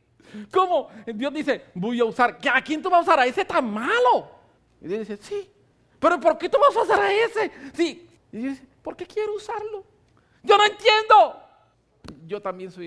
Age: 50-69